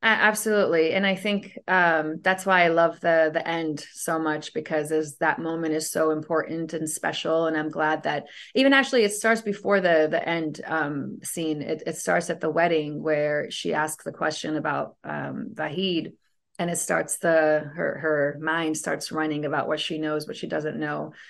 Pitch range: 155-175 Hz